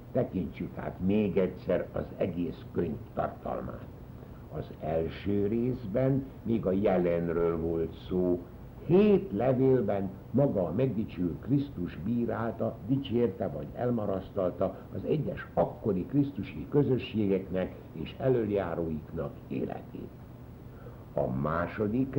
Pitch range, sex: 95-130 Hz, male